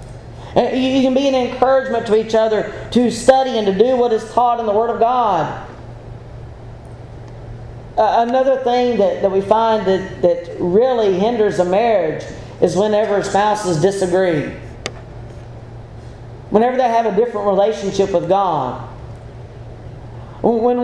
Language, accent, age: English, American, 40-59